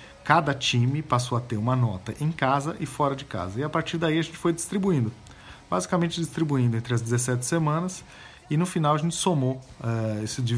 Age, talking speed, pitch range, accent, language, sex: 50-69, 195 wpm, 115-145 Hz, Brazilian, Portuguese, male